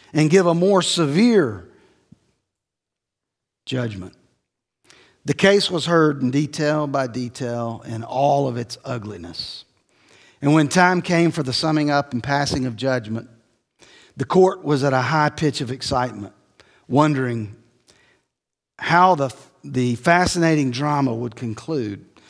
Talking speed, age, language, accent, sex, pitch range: 130 wpm, 50-69, English, American, male, 125-170 Hz